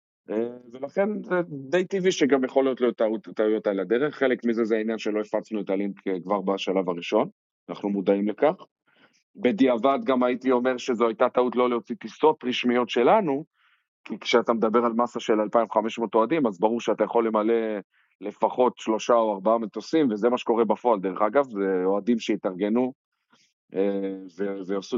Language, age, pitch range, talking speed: Hebrew, 40-59, 105-125 Hz, 160 wpm